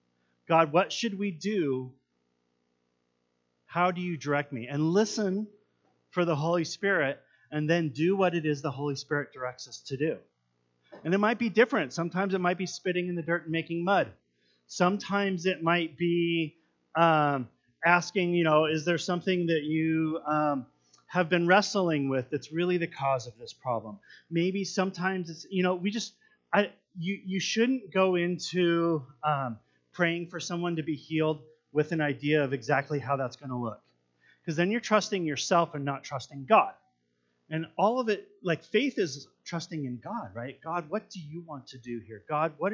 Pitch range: 125-180 Hz